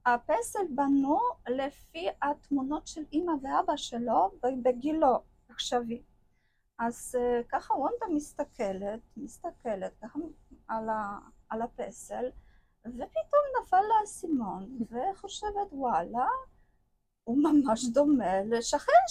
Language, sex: Hebrew, female